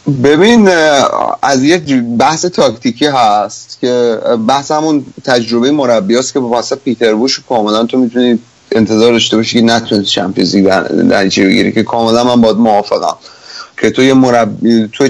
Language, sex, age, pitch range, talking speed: Persian, male, 30-49, 110-135 Hz, 135 wpm